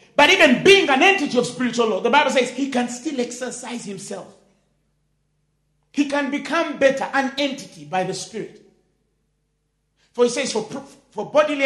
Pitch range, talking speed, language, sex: 185-275 Hz, 165 wpm, English, male